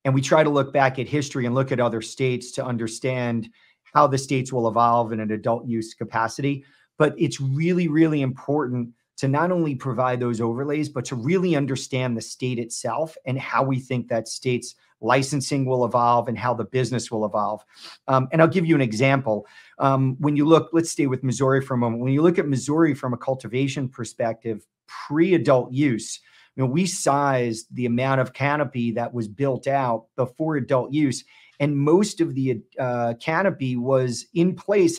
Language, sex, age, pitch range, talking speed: English, male, 40-59, 120-145 Hz, 190 wpm